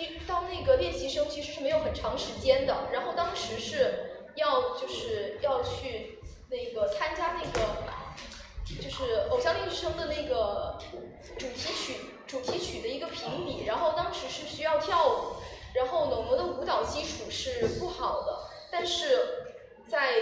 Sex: female